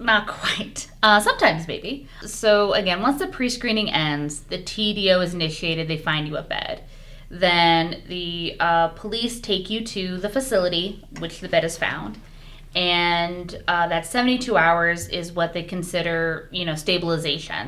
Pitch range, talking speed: 160-195 Hz, 155 wpm